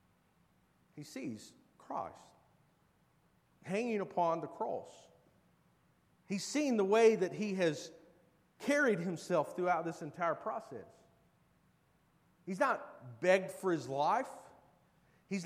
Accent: American